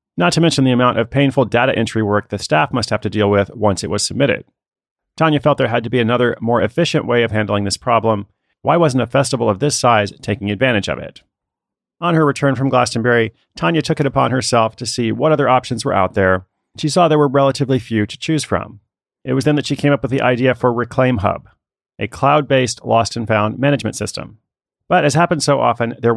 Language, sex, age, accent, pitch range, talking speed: English, male, 40-59, American, 105-135 Hz, 220 wpm